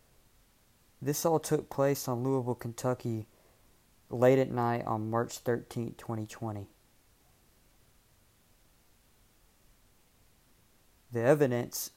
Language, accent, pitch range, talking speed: English, American, 115-125 Hz, 80 wpm